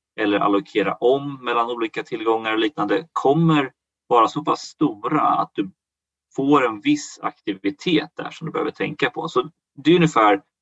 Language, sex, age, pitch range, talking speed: Swedish, male, 30-49, 105-155 Hz, 165 wpm